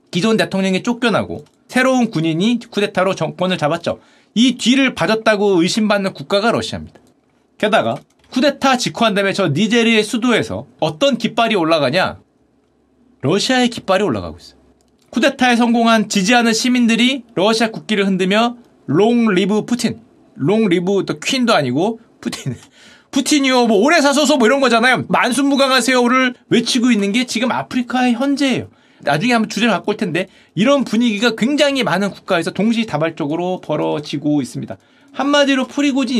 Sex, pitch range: male, 195-250 Hz